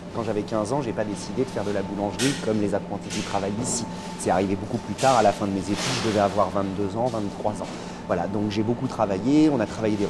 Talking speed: 275 wpm